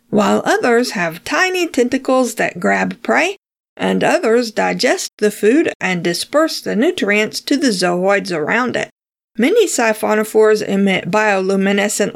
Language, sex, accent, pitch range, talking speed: English, female, American, 200-260 Hz, 130 wpm